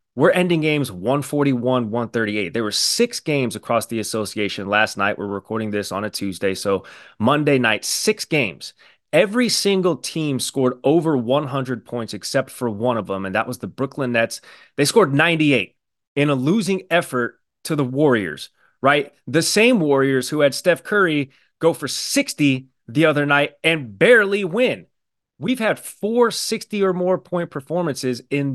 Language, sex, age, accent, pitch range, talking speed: English, male, 30-49, American, 110-155 Hz, 165 wpm